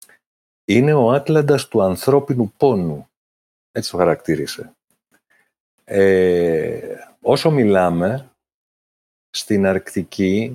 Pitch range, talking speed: 95-130 Hz, 80 wpm